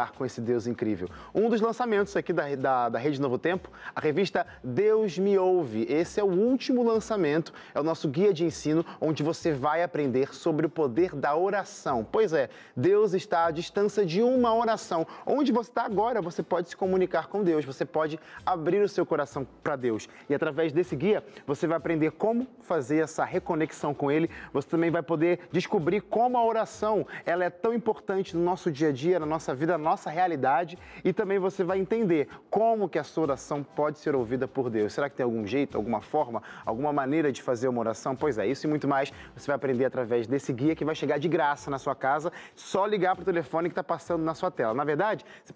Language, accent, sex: Portuguese, Brazilian, male